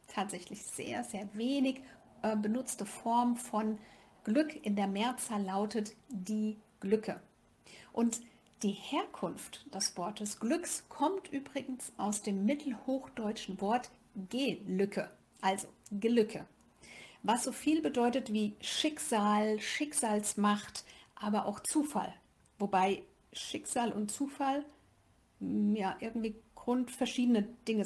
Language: German